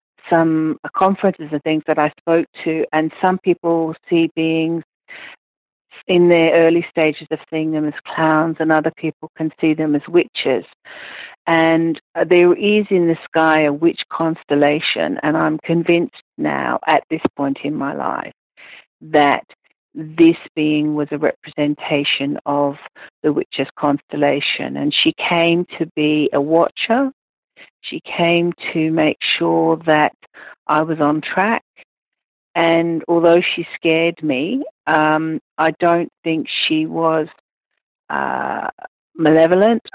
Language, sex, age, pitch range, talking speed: English, female, 50-69, 155-170 Hz, 135 wpm